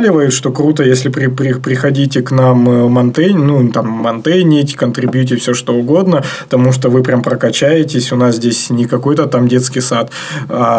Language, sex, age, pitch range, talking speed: Russian, male, 20-39, 125-150 Hz, 165 wpm